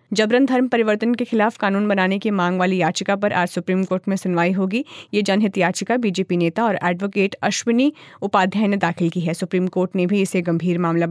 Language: Hindi